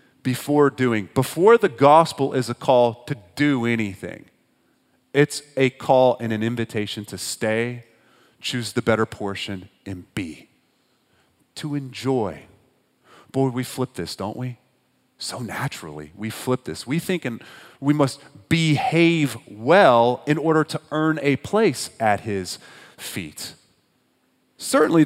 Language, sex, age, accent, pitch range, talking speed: English, male, 40-59, American, 100-145 Hz, 130 wpm